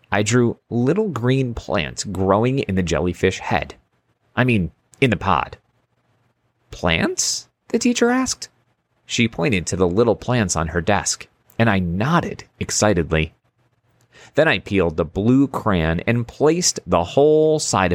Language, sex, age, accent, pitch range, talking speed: English, male, 30-49, American, 90-125 Hz, 145 wpm